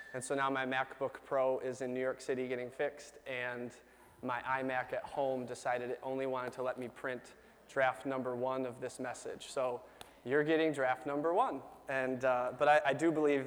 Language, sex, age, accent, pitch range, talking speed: English, male, 20-39, American, 130-155 Hz, 200 wpm